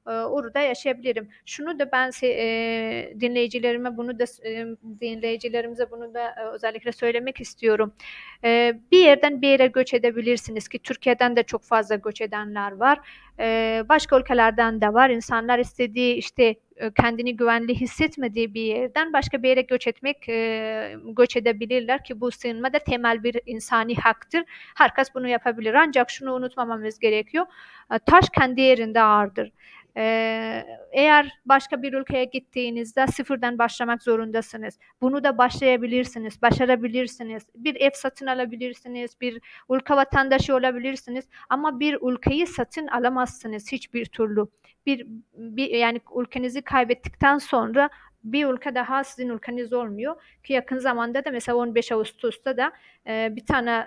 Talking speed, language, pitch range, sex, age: 130 wpm, Turkish, 230-265 Hz, female, 40-59